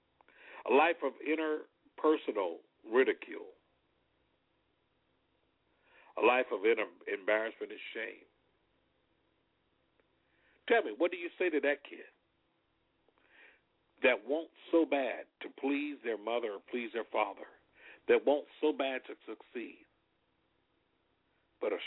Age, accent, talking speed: 60-79, American, 115 wpm